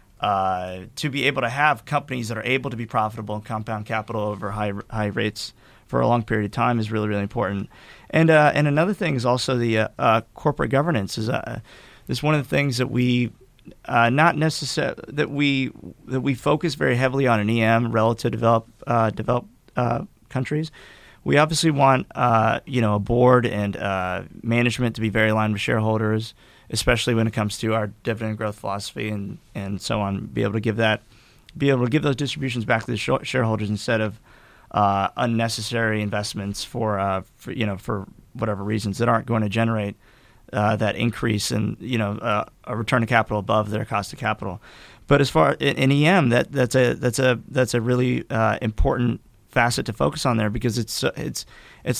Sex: male